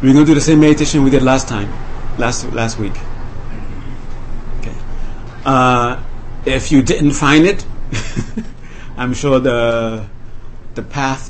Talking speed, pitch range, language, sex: 140 wpm, 115-130 Hz, English, male